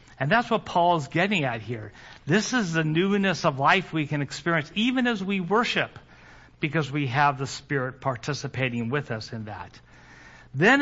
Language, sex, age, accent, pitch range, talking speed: English, male, 50-69, American, 135-185 Hz, 175 wpm